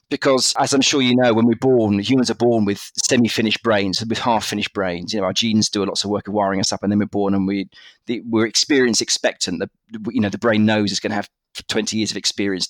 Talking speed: 260 wpm